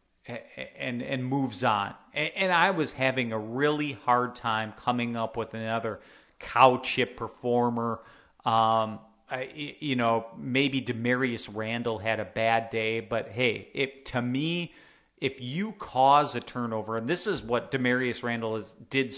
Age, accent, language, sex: 40-59, American, English, male